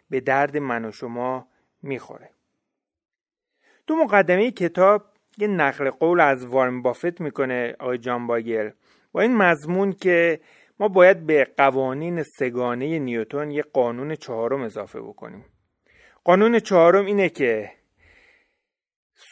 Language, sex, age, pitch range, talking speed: Persian, male, 30-49, 130-185 Hz, 115 wpm